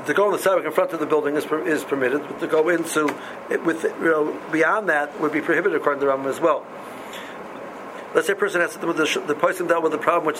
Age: 60-79